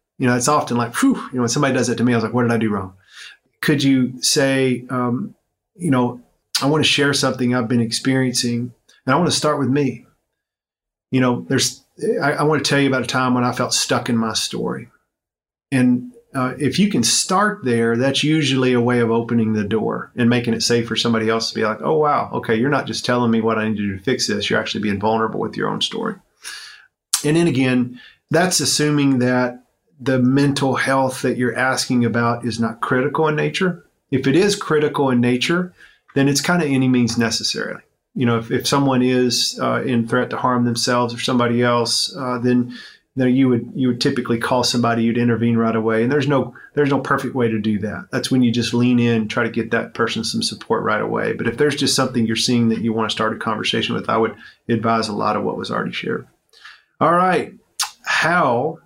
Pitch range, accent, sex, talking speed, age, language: 115-135 Hz, American, male, 225 wpm, 40-59, English